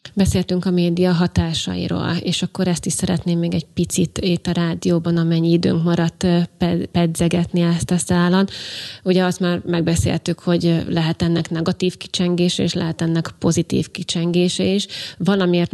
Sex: female